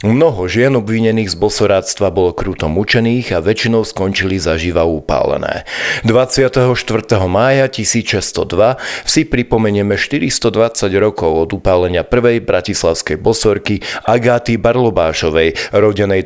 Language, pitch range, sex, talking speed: Slovak, 95-120 Hz, male, 105 wpm